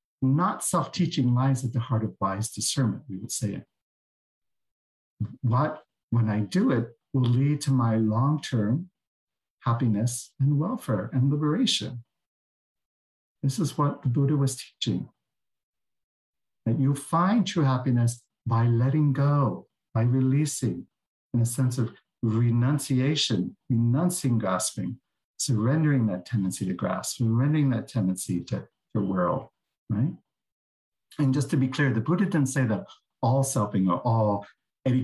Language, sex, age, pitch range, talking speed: English, male, 60-79, 110-140 Hz, 135 wpm